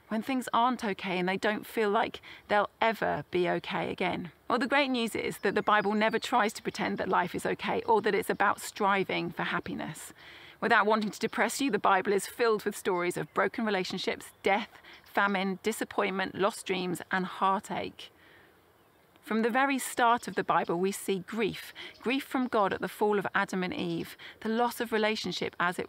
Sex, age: female, 30-49